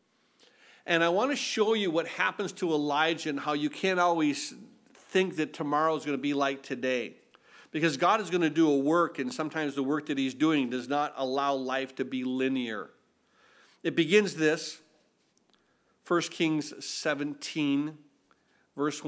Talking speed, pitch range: 165 wpm, 135-165 Hz